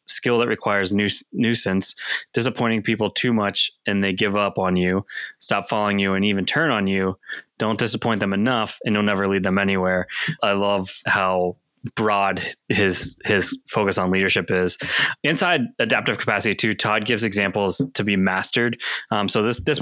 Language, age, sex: English, 20-39, male